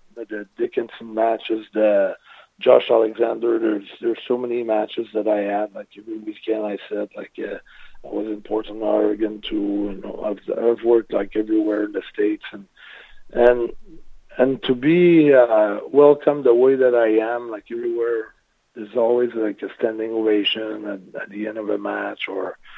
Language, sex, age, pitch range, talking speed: English, male, 40-59, 105-135 Hz, 170 wpm